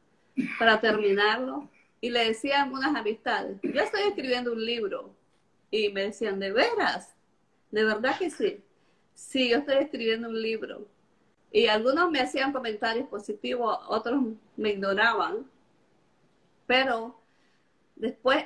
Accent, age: American, 40-59